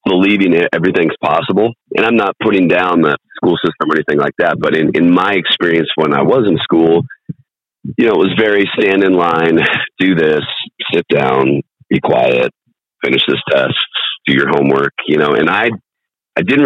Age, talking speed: 40-59, 185 wpm